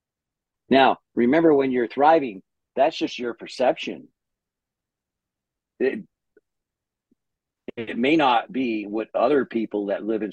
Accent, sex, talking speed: American, male, 115 wpm